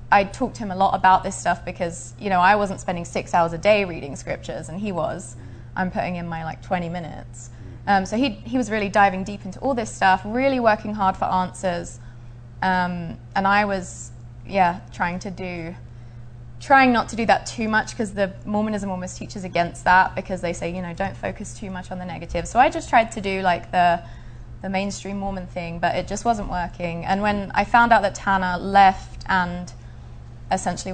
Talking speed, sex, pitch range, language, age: 210 wpm, female, 170-205 Hz, English, 20-39